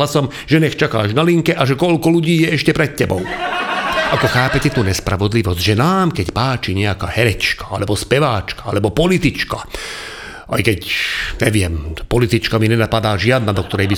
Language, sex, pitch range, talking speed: Slovak, male, 115-165 Hz, 160 wpm